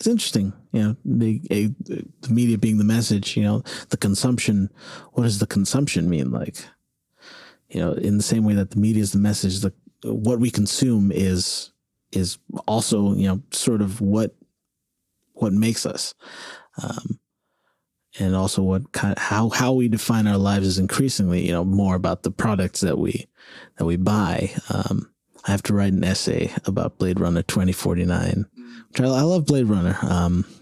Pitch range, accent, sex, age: 95-115 Hz, American, male, 30-49